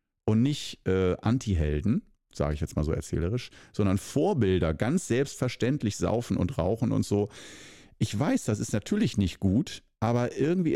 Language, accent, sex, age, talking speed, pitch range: German, German, male, 50-69, 155 wpm, 100-145 Hz